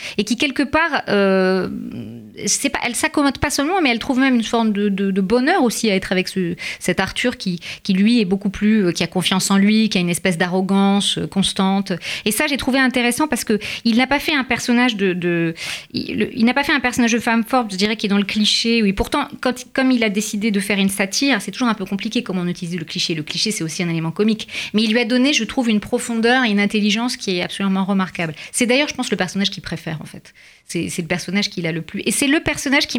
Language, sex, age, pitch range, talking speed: French, female, 30-49, 185-240 Hz, 260 wpm